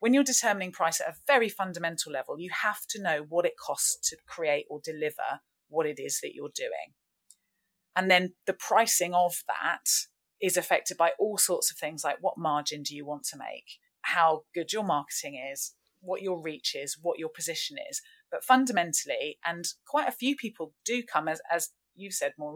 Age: 30-49